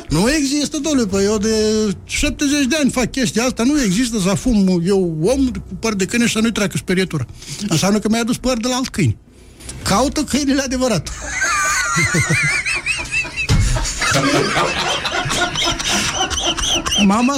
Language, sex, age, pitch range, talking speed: Romanian, male, 60-79, 170-255 Hz, 140 wpm